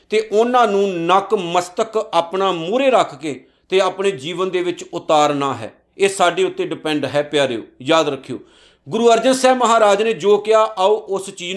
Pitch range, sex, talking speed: 175-230 Hz, male, 175 wpm